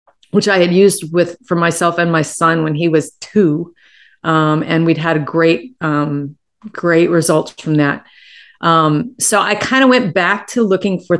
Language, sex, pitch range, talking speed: English, female, 160-200 Hz, 190 wpm